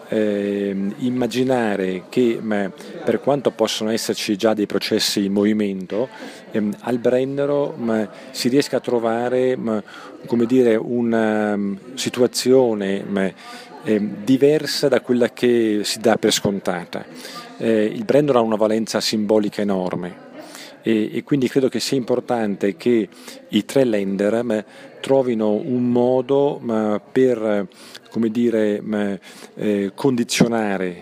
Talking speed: 125 wpm